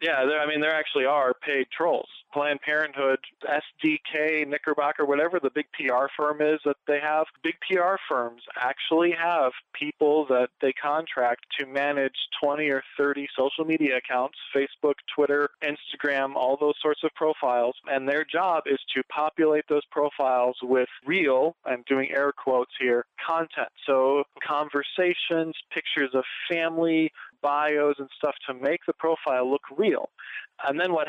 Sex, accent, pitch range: male, American, 135-155 Hz